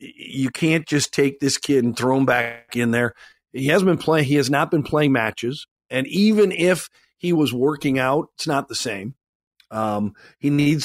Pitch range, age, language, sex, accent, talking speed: 135-175 Hz, 50-69, English, male, American, 200 wpm